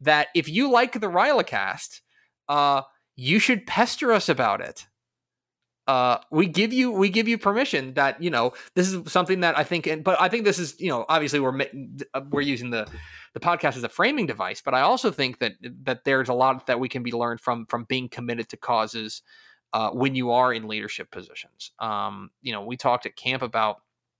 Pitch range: 115-155 Hz